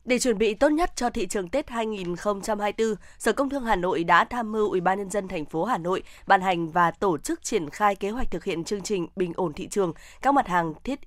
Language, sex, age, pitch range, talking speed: Vietnamese, female, 20-39, 180-230 Hz, 255 wpm